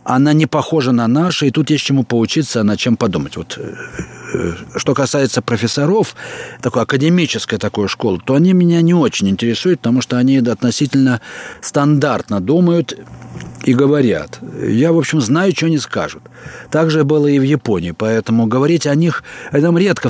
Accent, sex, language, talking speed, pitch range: native, male, Russian, 165 wpm, 115-150 Hz